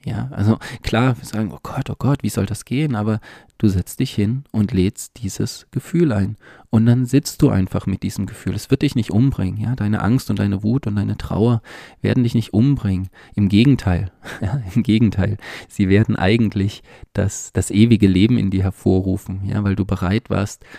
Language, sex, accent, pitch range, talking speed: German, male, German, 95-115 Hz, 195 wpm